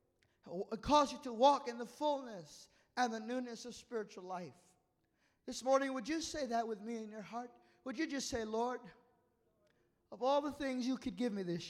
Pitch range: 160-240 Hz